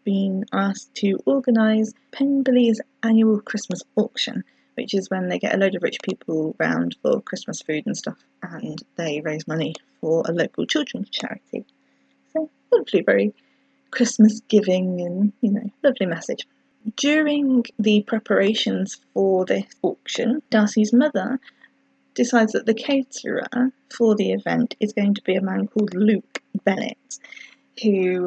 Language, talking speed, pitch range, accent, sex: English, 140 wpm, 185-245 Hz, British, female